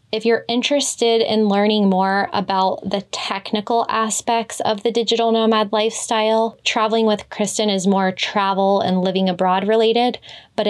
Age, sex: 20-39, female